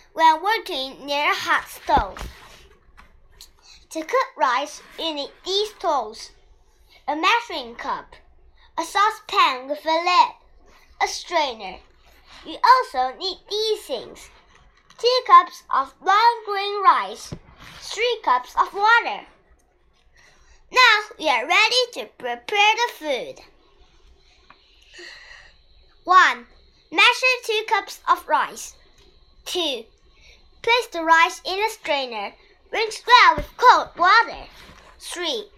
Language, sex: Chinese, male